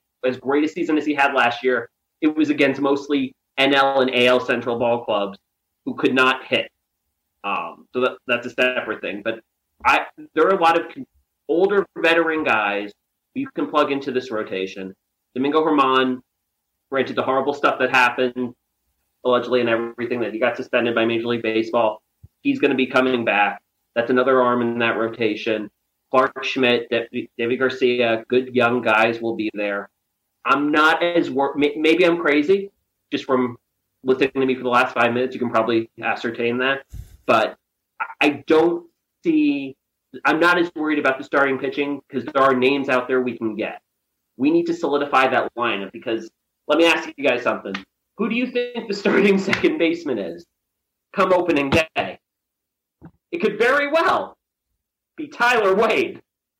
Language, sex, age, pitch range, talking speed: English, male, 30-49, 120-165 Hz, 170 wpm